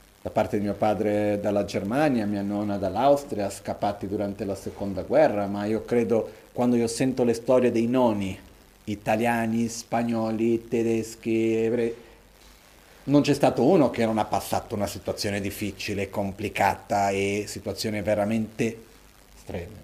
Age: 40-59